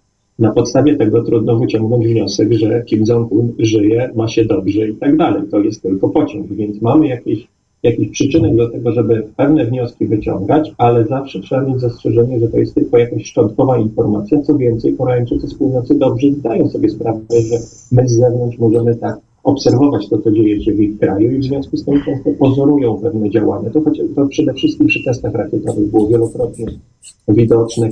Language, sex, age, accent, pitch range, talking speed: Polish, male, 40-59, native, 115-140 Hz, 185 wpm